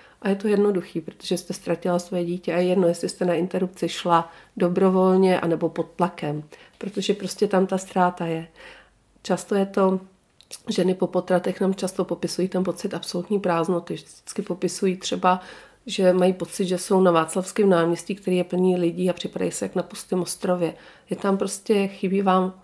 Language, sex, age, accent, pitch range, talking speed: Czech, female, 40-59, native, 170-190 Hz, 180 wpm